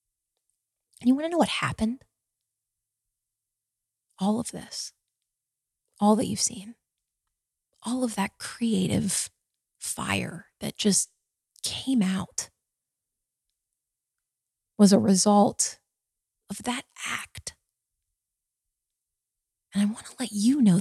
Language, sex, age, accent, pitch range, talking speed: English, female, 30-49, American, 155-245 Hz, 100 wpm